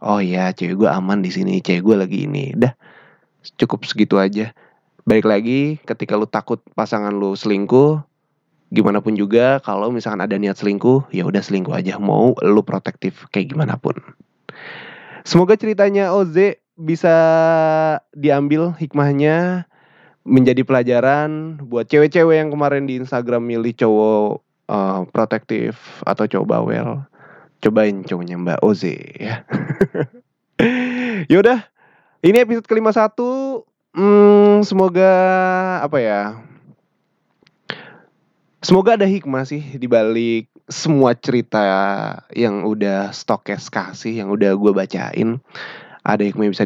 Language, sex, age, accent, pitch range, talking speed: Indonesian, male, 20-39, native, 105-160 Hz, 125 wpm